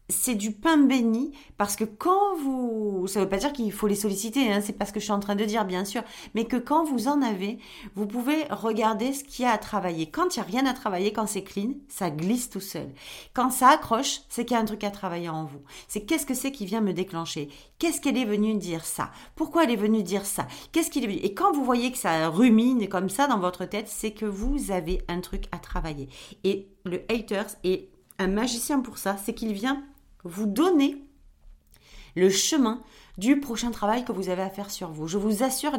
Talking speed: 240 wpm